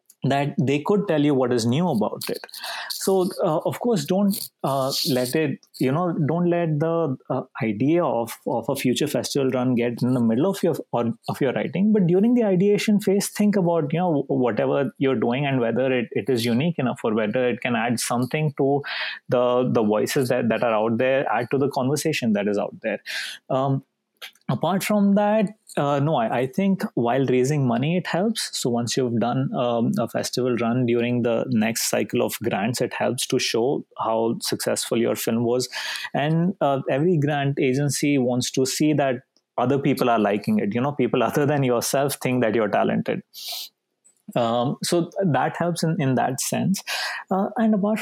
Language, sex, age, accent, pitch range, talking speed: English, male, 30-49, Indian, 125-175 Hz, 190 wpm